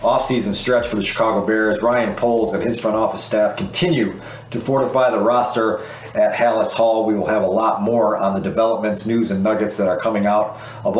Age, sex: 40-59, male